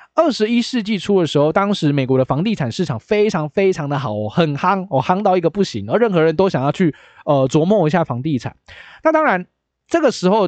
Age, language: 20-39, Chinese